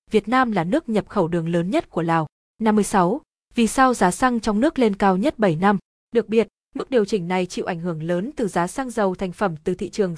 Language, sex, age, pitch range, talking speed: Vietnamese, female, 20-39, 185-230 Hz, 250 wpm